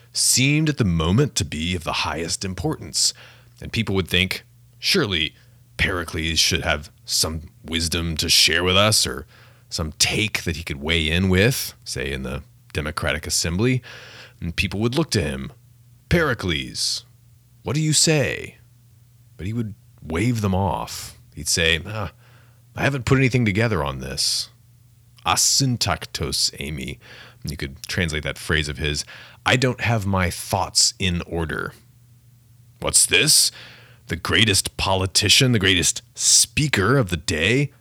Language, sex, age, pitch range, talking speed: English, male, 30-49, 85-120 Hz, 145 wpm